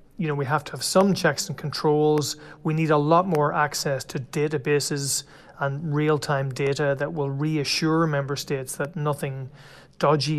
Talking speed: 170 wpm